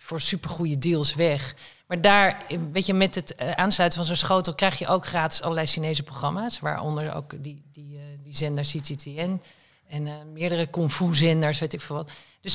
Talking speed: 185 wpm